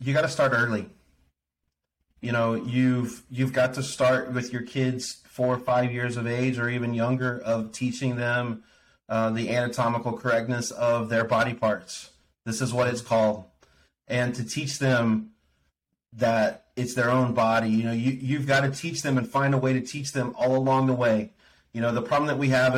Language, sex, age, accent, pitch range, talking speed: English, male, 30-49, American, 115-130 Hz, 195 wpm